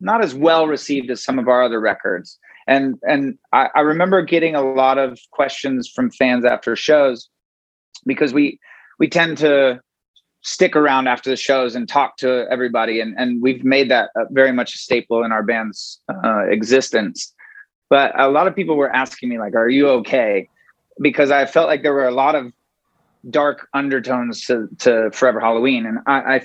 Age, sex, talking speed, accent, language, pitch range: 30-49, male, 185 wpm, American, English, 120-145 Hz